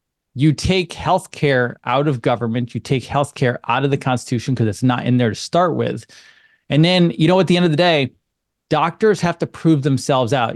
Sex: male